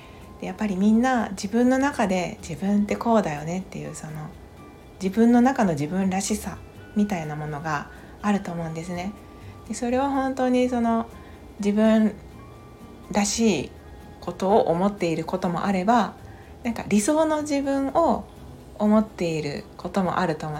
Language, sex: Japanese, female